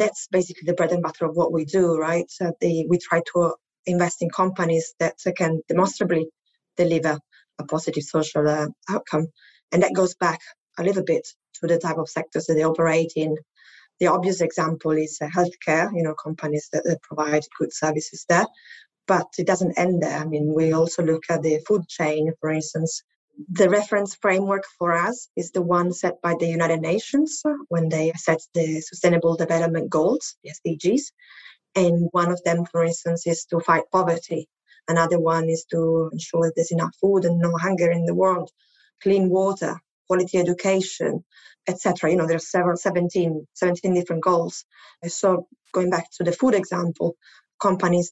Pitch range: 165-180 Hz